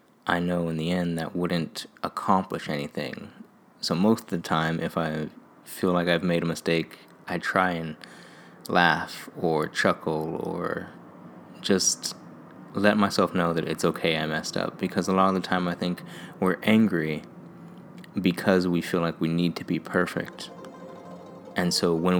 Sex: male